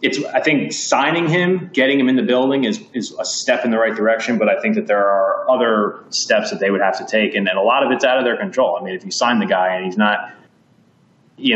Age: 20-39